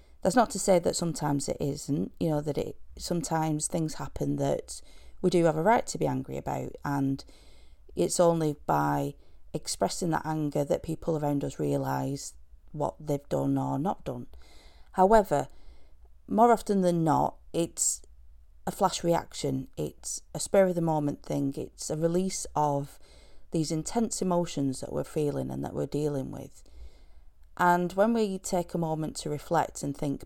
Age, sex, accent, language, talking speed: 30-49, female, British, English, 165 wpm